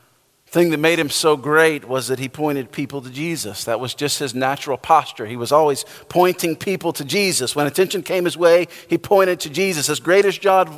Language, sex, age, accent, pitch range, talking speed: English, male, 50-69, American, 165-200 Hz, 215 wpm